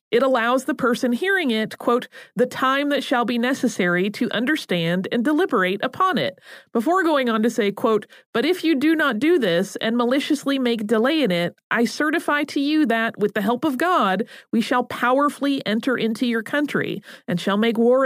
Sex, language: female, English